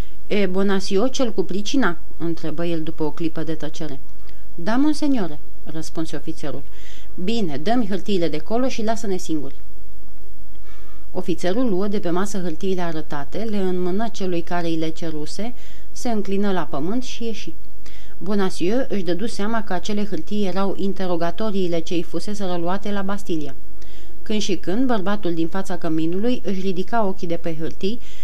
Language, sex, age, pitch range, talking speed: Romanian, female, 30-49, 165-210 Hz, 150 wpm